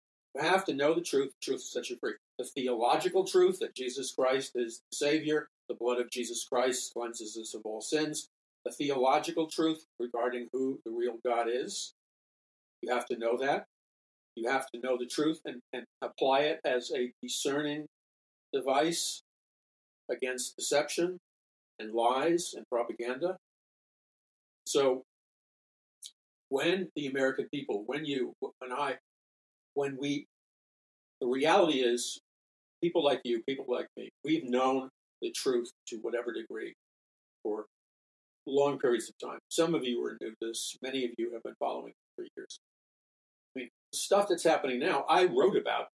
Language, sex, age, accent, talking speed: English, male, 50-69, American, 155 wpm